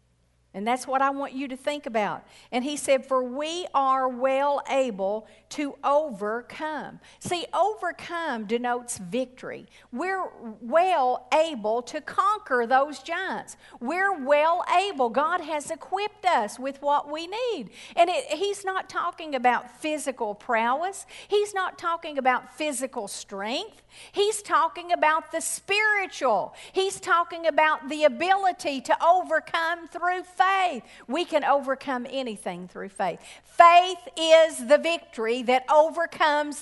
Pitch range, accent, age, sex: 255-345 Hz, American, 50-69, female